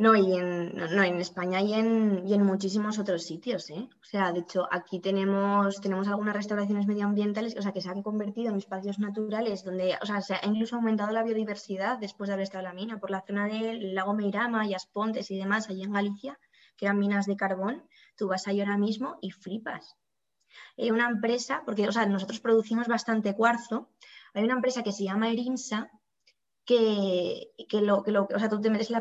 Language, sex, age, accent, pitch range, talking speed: Spanish, female, 20-39, Spanish, 195-230 Hz, 210 wpm